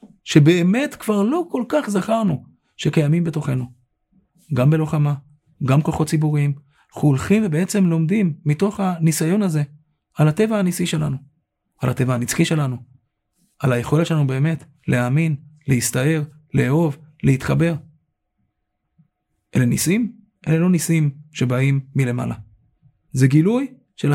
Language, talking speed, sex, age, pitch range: Hebrew, 115 wpm, male, 30-49, 135-165 Hz